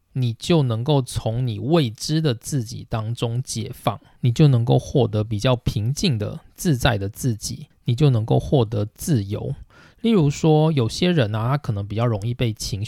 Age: 20-39